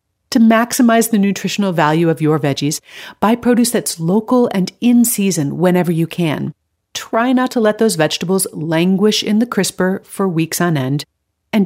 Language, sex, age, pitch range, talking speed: English, female, 40-59, 160-225 Hz, 170 wpm